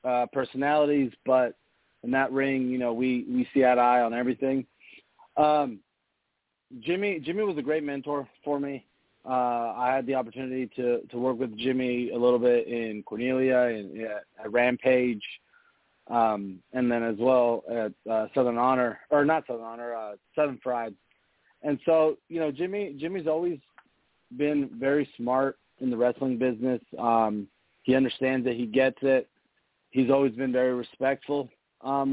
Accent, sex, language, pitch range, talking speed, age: American, male, English, 125-145 Hz, 160 wpm, 30-49